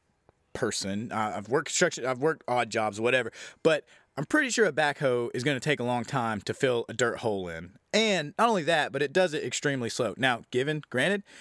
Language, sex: English, male